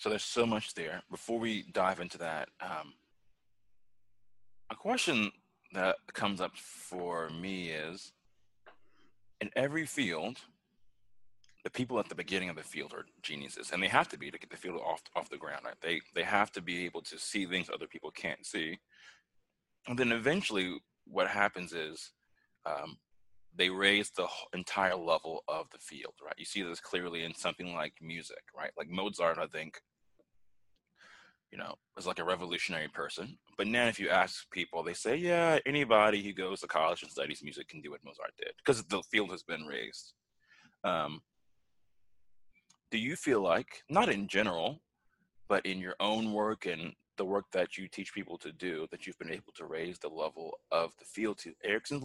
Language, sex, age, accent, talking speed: English, male, 30-49, American, 180 wpm